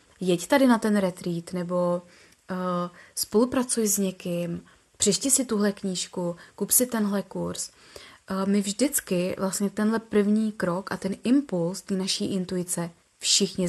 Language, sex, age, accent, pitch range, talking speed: Czech, female, 20-39, native, 190-210 Hz, 140 wpm